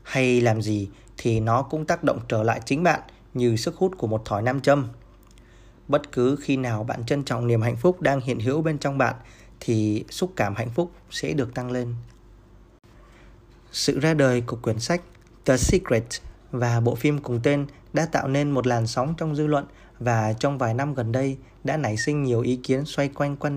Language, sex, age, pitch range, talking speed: Vietnamese, male, 20-39, 115-140 Hz, 210 wpm